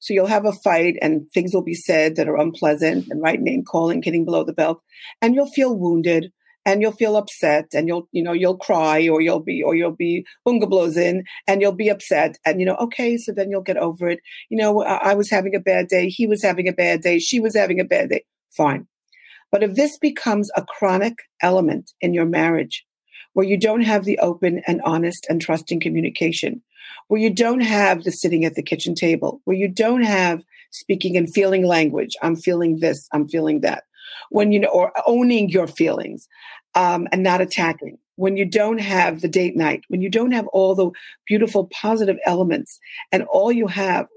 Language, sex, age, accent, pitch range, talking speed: English, female, 40-59, American, 170-210 Hz, 210 wpm